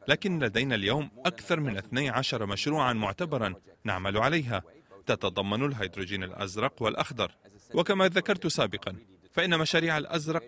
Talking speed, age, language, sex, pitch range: 115 wpm, 30-49, Arabic, male, 100-135 Hz